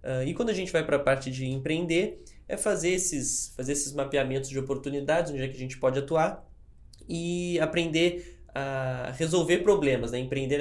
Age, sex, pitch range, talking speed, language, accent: 20-39, male, 135-165 Hz, 175 wpm, Portuguese, Brazilian